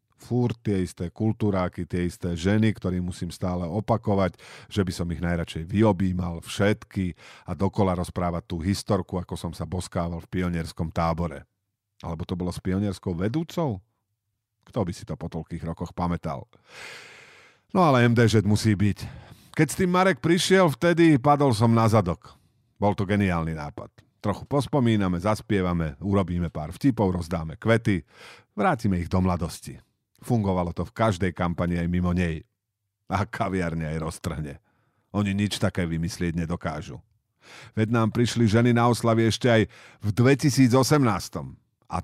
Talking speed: 145 wpm